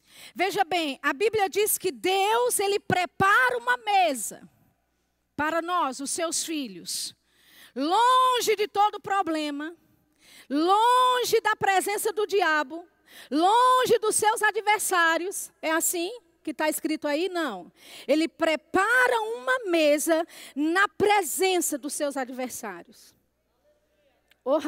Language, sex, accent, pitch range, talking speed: Portuguese, female, Brazilian, 330-450 Hz, 110 wpm